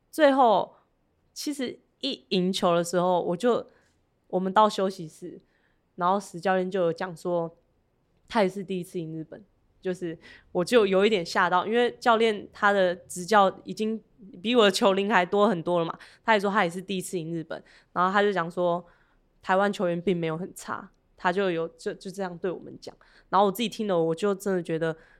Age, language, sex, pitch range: 20-39, Chinese, female, 175-210 Hz